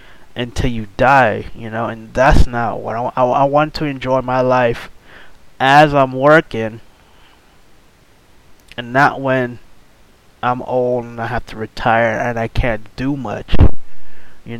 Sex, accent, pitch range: male, American, 110-130 Hz